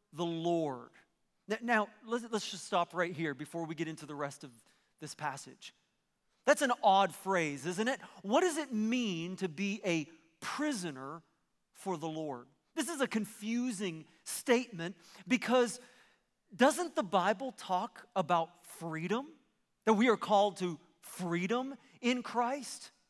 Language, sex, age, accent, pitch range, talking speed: English, male, 40-59, American, 180-250 Hz, 145 wpm